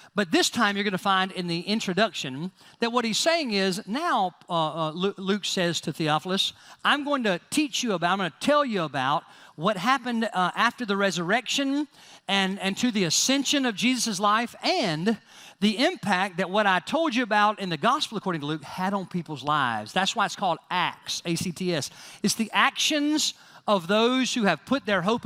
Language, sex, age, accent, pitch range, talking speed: English, male, 40-59, American, 160-210 Hz, 195 wpm